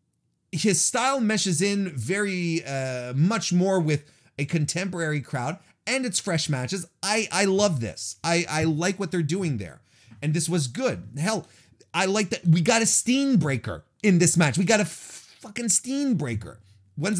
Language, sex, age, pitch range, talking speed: English, male, 30-49, 130-205 Hz, 180 wpm